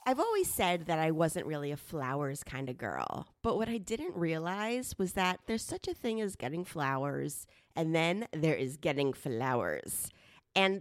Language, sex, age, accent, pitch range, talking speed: English, female, 30-49, American, 175-245 Hz, 185 wpm